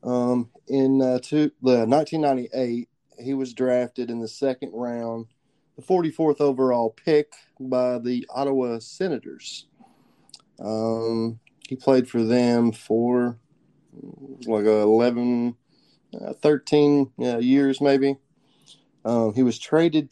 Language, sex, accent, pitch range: English, male, American, 115-140 Hz